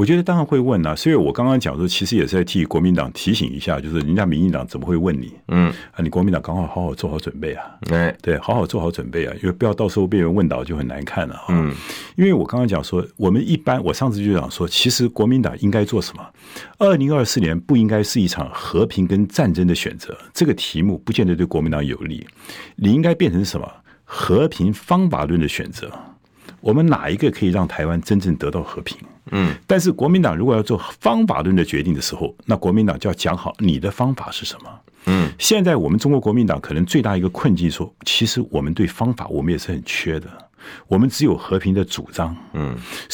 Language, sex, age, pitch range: Chinese, male, 50-69, 85-125 Hz